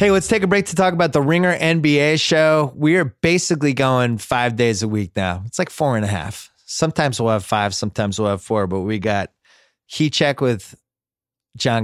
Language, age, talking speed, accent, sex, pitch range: English, 30-49, 215 wpm, American, male, 100-140 Hz